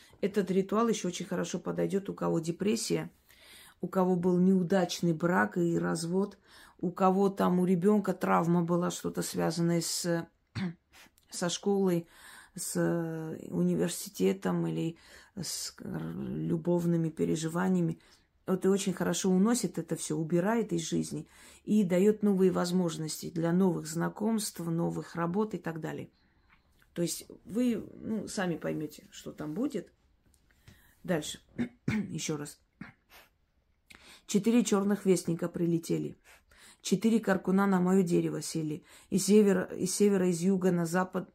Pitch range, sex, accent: 170-195 Hz, female, native